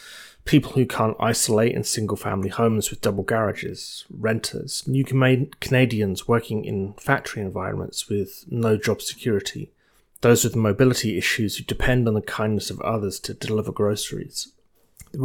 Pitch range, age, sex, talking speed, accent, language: 110-130 Hz, 30-49, male, 140 wpm, British, English